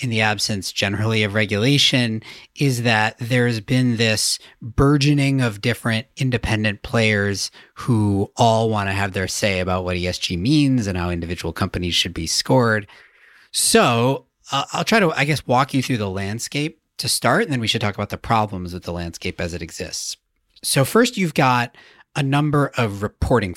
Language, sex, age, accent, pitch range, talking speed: English, male, 40-59, American, 100-130 Hz, 180 wpm